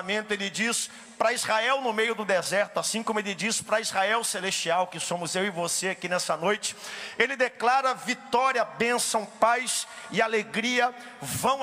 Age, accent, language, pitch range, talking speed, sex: 50-69, Brazilian, Portuguese, 200-250 Hz, 160 wpm, male